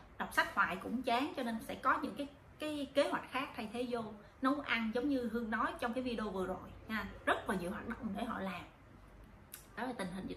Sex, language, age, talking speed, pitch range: female, Vietnamese, 20-39, 250 wpm, 230-285 Hz